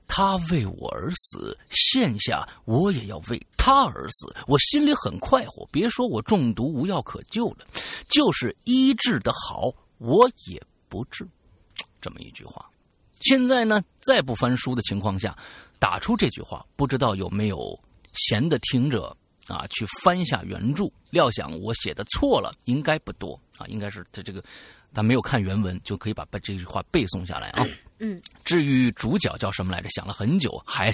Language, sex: Chinese, male